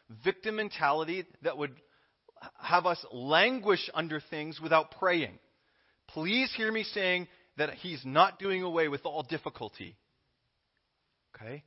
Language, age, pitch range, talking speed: English, 30-49, 150-200 Hz, 125 wpm